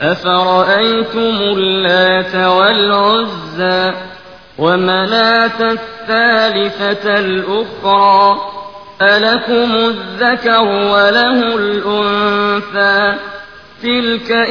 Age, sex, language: 30-49, male, Arabic